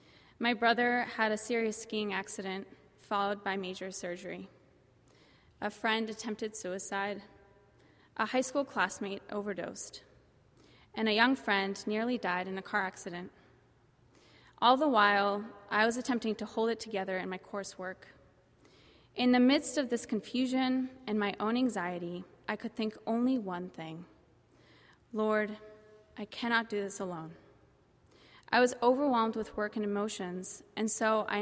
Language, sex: English, female